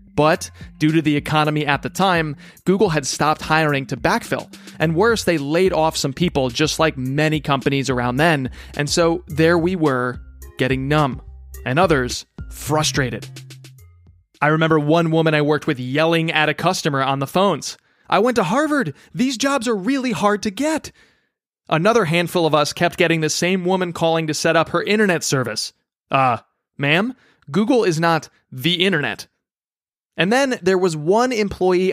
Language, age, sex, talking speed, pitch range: English, 20-39, male, 170 wpm, 140-180 Hz